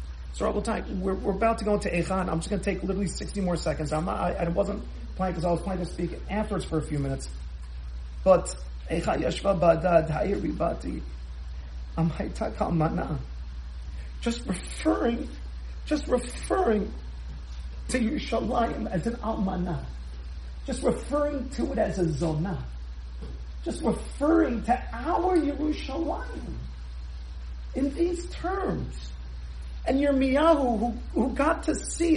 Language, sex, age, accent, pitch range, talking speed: English, male, 40-59, American, 155-245 Hz, 140 wpm